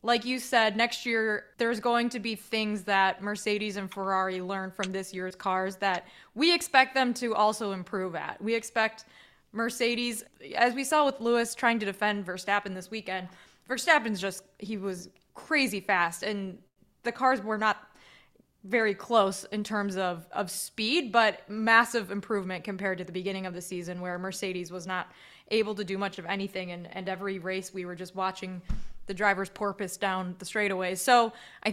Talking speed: 180 wpm